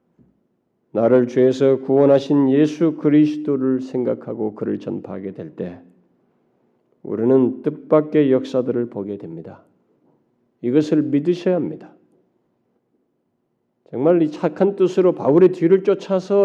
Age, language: 40-59, Korean